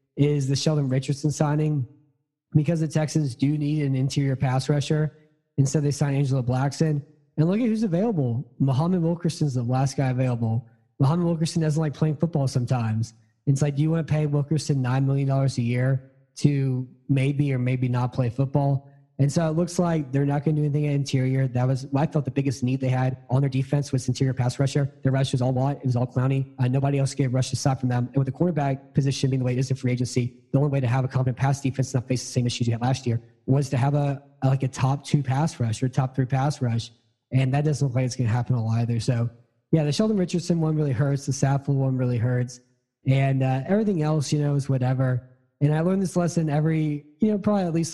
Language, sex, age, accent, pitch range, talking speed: English, male, 20-39, American, 125-145 Hz, 245 wpm